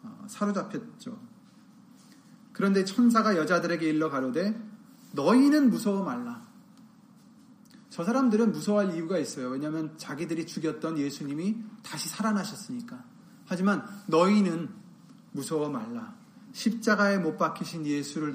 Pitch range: 185-235 Hz